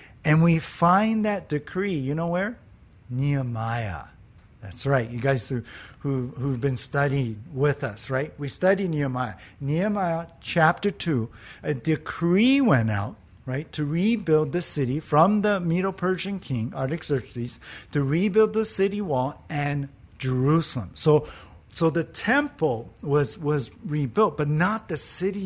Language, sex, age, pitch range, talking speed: English, male, 50-69, 125-170 Hz, 140 wpm